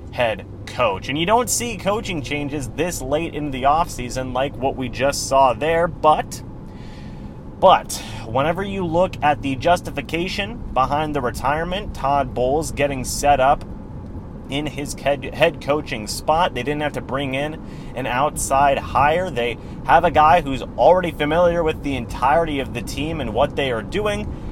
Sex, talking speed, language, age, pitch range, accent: male, 165 wpm, English, 30-49, 135-170 Hz, American